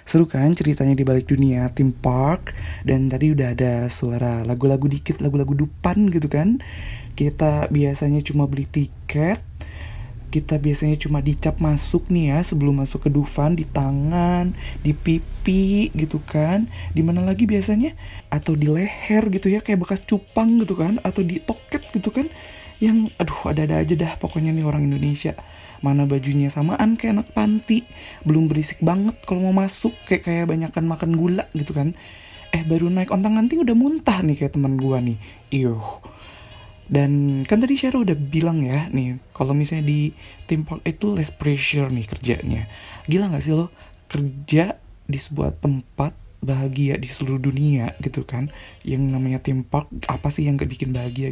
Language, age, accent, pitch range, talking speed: Indonesian, 20-39, native, 135-175 Hz, 165 wpm